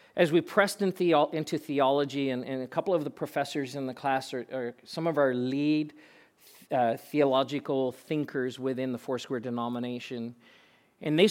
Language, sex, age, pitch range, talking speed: English, male, 40-59, 130-165 Hz, 170 wpm